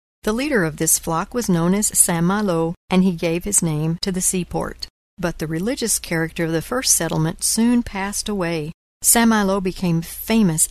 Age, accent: 60-79, American